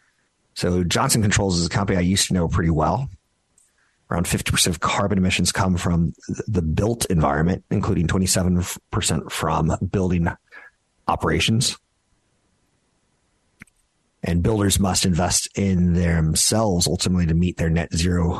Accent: American